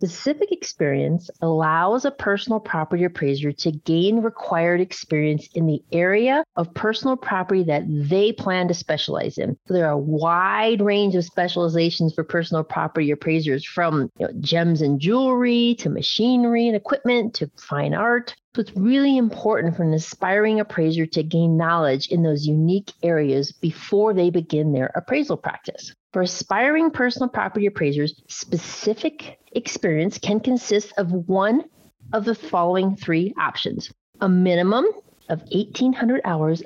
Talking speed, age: 140 wpm, 40-59